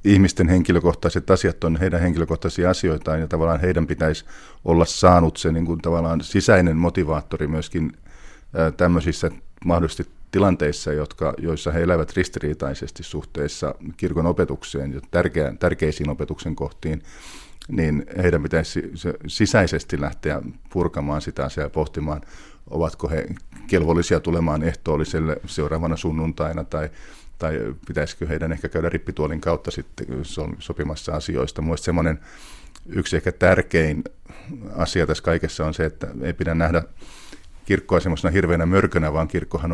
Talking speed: 125 wpm